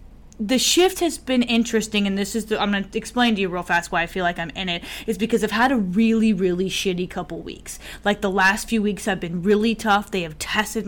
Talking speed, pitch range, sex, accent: 250 wpm, 190-225 Hz, female, American